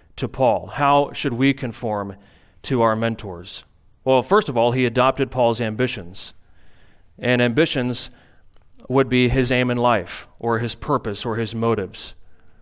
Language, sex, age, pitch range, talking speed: English, male, 30-49, 95-125 Hz, 145 wpm